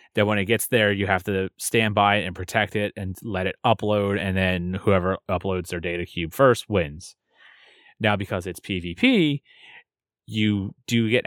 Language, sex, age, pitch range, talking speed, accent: English, male, 30-49, 95-110 Hz, 180 wpm, American